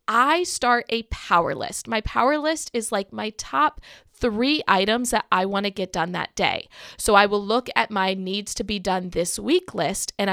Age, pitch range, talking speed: 20-39, 195-275 Hz, 210 wpm